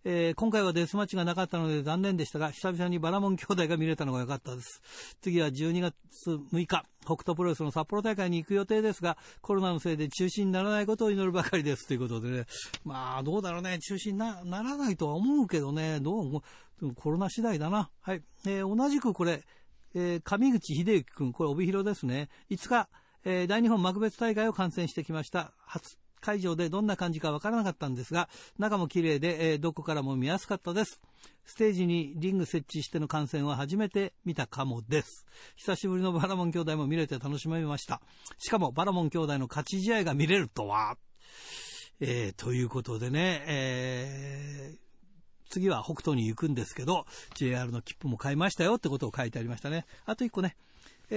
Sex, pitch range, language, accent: male, 150-200 Hz, Japanese, native